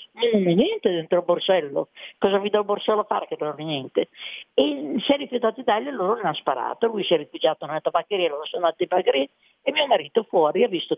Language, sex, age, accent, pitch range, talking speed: Italian, female, 50-69, native, 175-230 Hz, 240 wpm